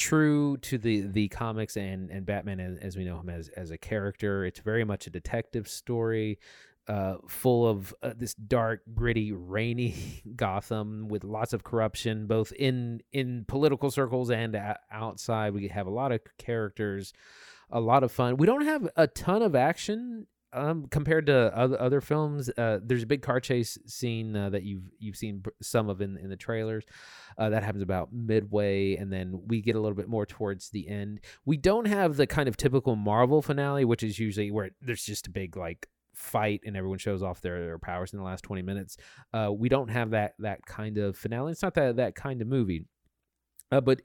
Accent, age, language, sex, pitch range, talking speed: American, 30-49, English, male, 100-125 Hz, 200 wpm